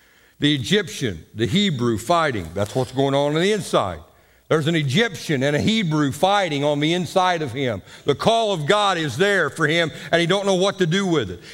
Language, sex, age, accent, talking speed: English, male, 60-79, American, 215 wpm